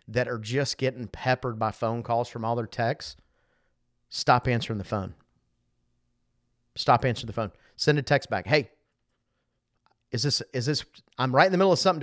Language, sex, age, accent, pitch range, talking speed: English, male, 40-59, American, 115-155 Hz, 180 wpm